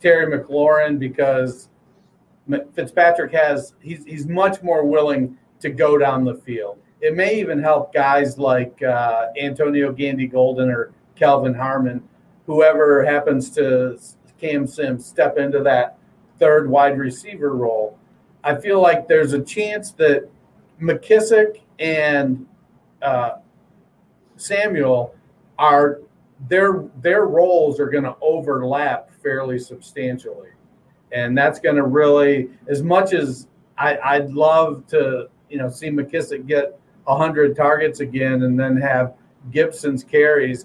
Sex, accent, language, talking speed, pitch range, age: male, American, English, 125 wpm, 130-160 Hz, 50-69